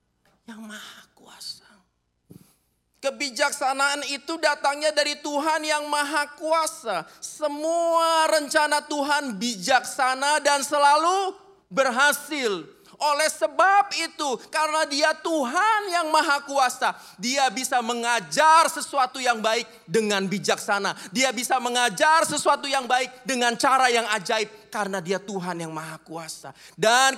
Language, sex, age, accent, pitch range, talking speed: Indonesian, male, 30-49, native, 215-290 Hz, 115 wpm